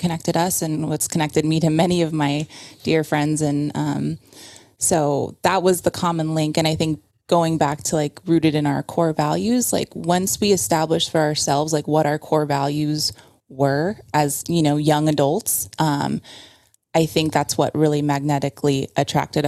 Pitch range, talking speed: 145-170 Hz, 175 wpm